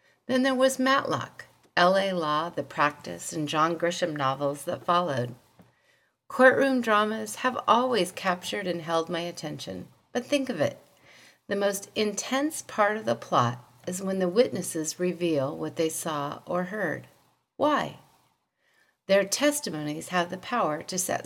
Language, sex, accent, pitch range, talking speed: English, female, American, 160-220 Hz, 145 wpm